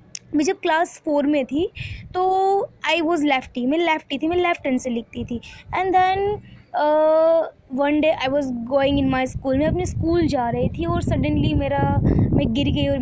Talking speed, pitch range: 195 wpm, 270-320 Hz